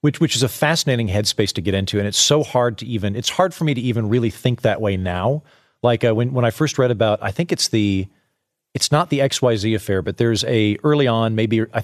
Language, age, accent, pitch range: English, 40-59, American, 110-140 Hz